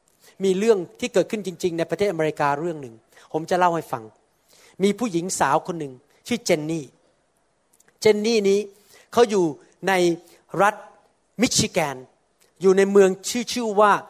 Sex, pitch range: male, 175-225 Hz